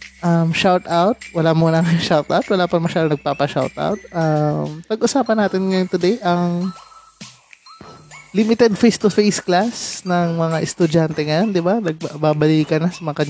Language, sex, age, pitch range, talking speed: Filipino, male, 20-39, 145-175 Hz, 150 wpm